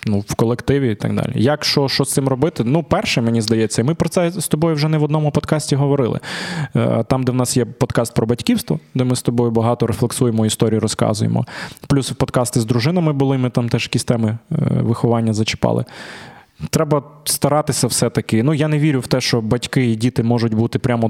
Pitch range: 115-140 Hz